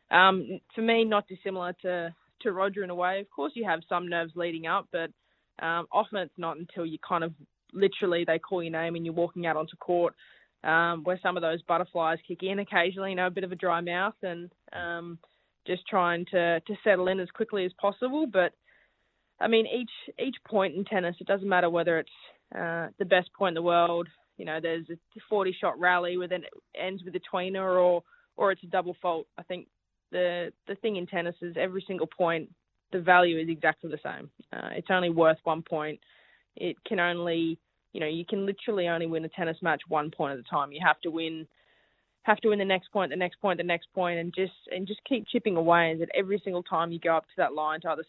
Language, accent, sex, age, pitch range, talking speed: English, Australian, female, 20-39, 165-190 Hz, 230 wpm